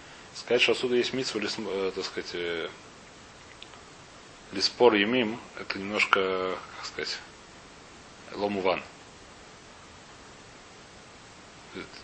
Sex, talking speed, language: male, 85 wpm, Russian